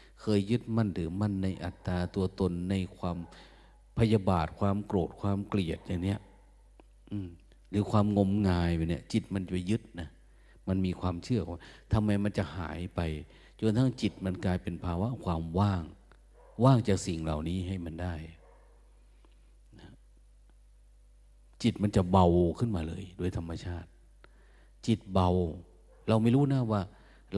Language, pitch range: Thai, 85-105 Hz